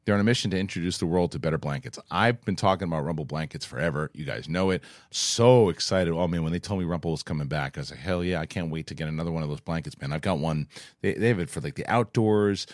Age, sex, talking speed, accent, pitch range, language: 40-59, male, 285 wpm, American, 85-110 Hz, English